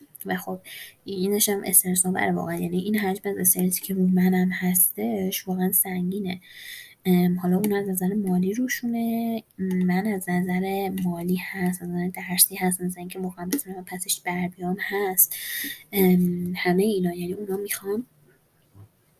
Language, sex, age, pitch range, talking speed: Persian, female, 20-39, 185-225 Hz, 140 wpm